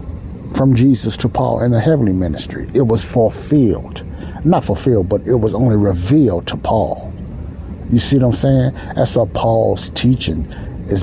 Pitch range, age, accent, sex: 90-115 Hz, 60-79, American, male